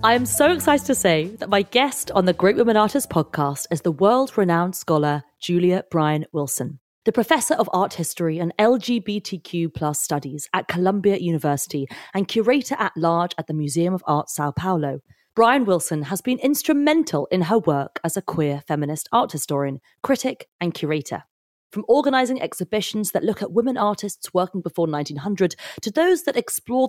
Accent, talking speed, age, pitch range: British, 165 wpm, 30-49, 155-225 Hz